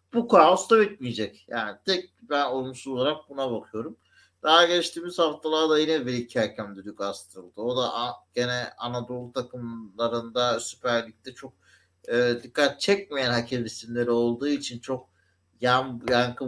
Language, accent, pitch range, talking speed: Turkish, native, 115-155 Hz, 125 wpm